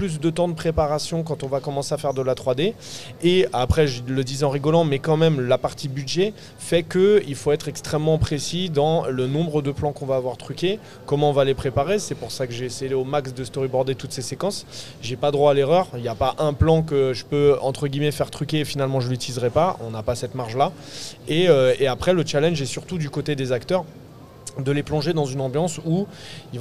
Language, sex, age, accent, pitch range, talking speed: French, male, 20-39, French, 130-155 Hz, 245 wpm